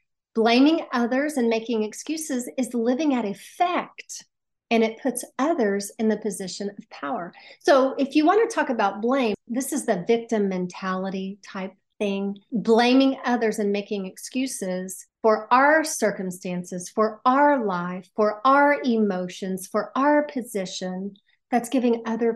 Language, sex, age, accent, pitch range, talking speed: English, female, 40-59, American, 205-260 Hz, 140 wpm